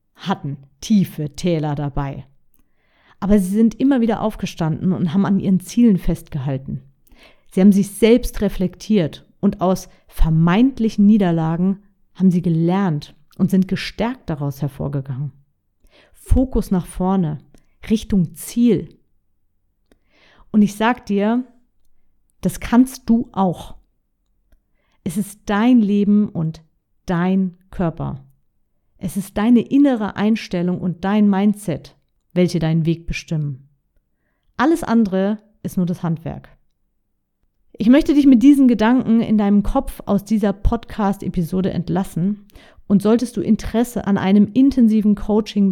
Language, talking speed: German, 120 wpm